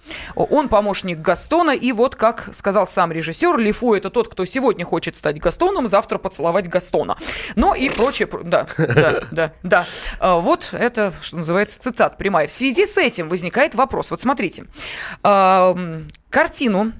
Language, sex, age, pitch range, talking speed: Russian, female, 20-39, 185-255 Hz, 150 wpm